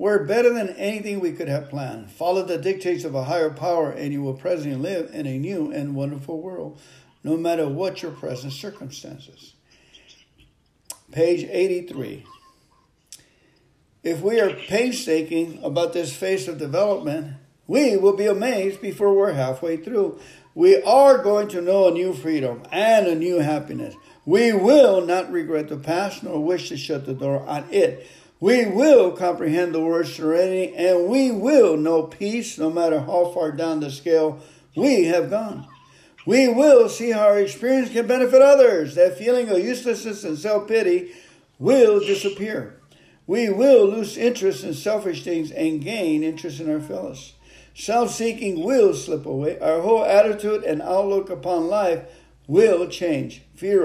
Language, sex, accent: English, male, American